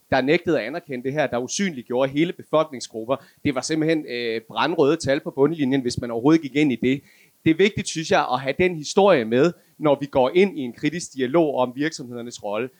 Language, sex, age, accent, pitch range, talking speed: Danish, male, 30-49, native, 135-170 Hz, 220 wpm